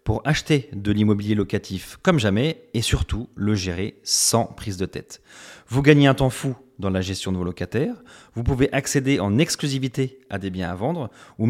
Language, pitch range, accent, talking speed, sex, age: French, 100-135 Hz, French, 195 wpm, male, 30-49